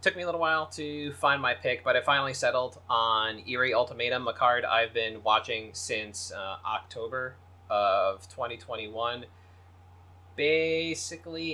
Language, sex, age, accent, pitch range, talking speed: English, male, 20-39, American, 105-140 Hz, 140 wpm